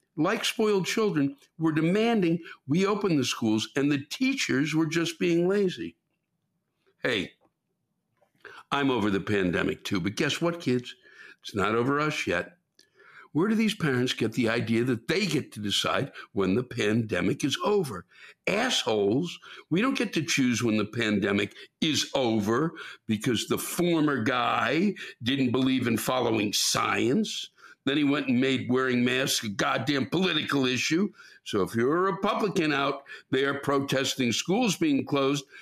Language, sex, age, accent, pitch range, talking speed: English, male, 60-79, American, 125-170 Hz, 150 wpm